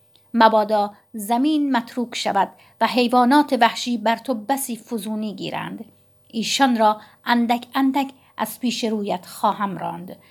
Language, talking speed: Persian, 120 wpm